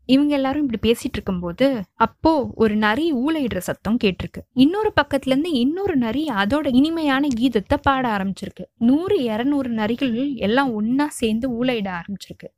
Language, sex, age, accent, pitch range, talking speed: Tamil, female, 20-39, native, 205-270 Hz, 135 wpm